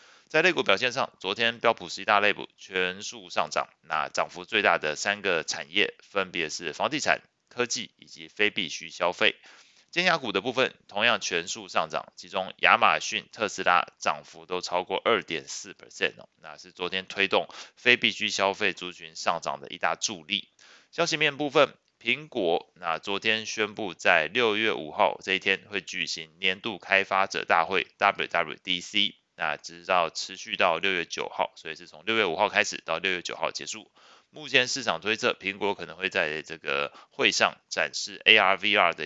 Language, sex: Chinese, male